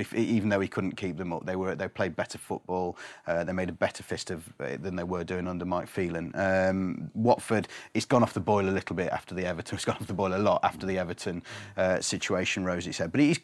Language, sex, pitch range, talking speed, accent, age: English, male, 95-120 Hz, 255 wpm, British, 30-49